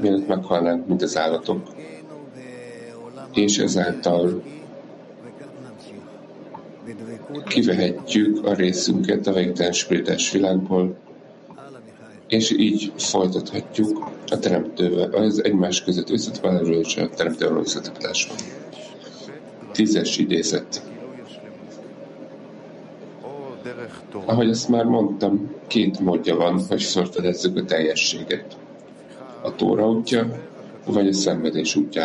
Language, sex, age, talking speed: English, male, 50-69, 90 wpm